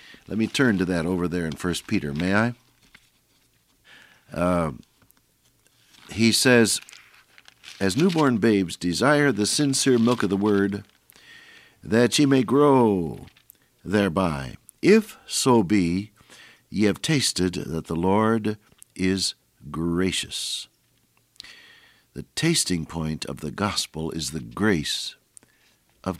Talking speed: 115 wpm